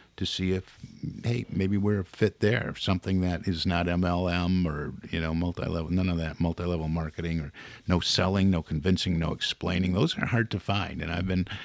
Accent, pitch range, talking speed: American, 85-105 Hz, 195 wpm